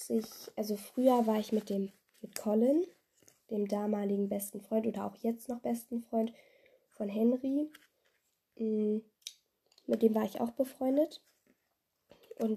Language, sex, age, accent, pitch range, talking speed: German, female, 10-29, German, 215-275 Hz, 135 wpm